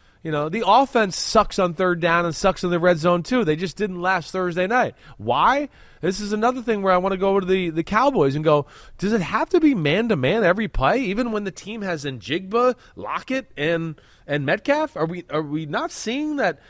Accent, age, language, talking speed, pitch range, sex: American, 20-39, English, 230 wpm, 150-225 Hz, male